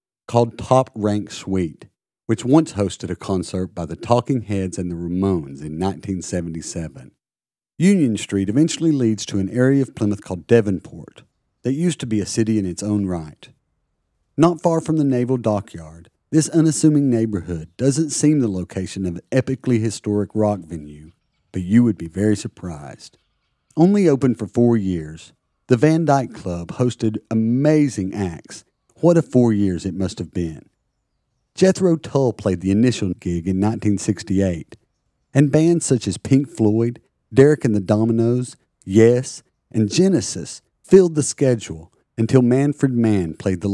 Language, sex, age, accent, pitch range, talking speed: English, male, 40-59, American, 90-130 Hz, 155 wpm